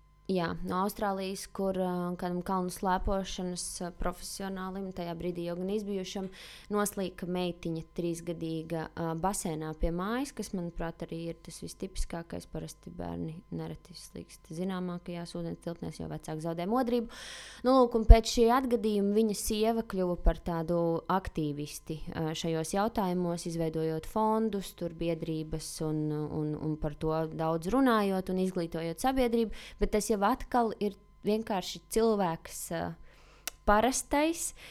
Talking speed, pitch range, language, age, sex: 125 wpm, 170-225 Hz, English, 20-39, female